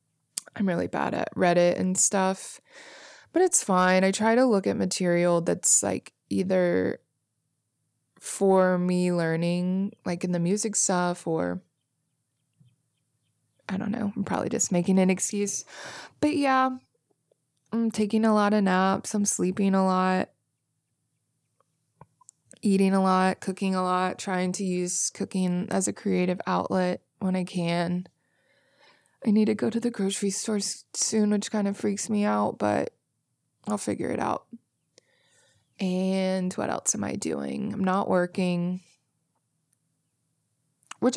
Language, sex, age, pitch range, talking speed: English, female, 20-39, 155-195 Hz, 140 wpm